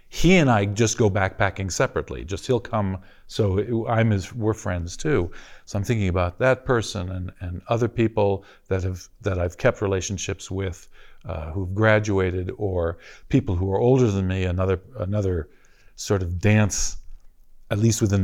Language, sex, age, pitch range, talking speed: English, male, 50-69, 90-115 Hz, 170 wpm